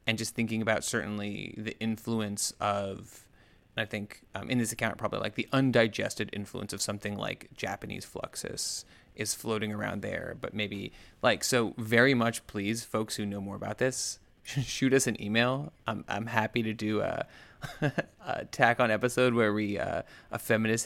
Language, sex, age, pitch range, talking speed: English, male, 20-39, 105-125 Hz, 175 wpm